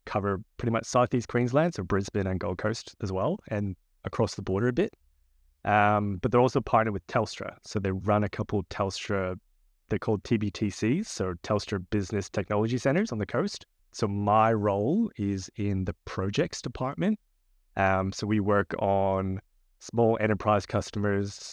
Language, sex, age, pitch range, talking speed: English, male, 20-39, 95-115 Hz, 165 wpm